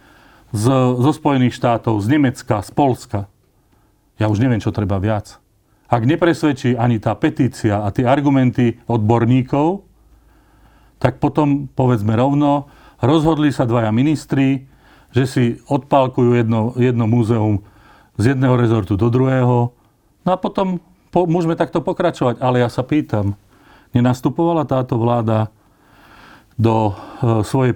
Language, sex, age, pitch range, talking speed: Slovak, male, 40-59, 110-145 Hz, 125 wpm